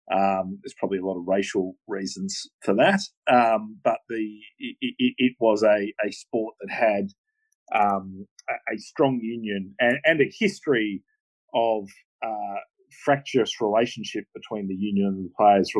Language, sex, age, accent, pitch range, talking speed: English, male, 40-59, Australian, 95-125 Hz, 160 wpm